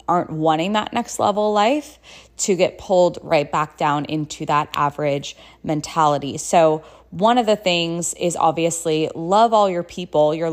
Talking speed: 160 wpm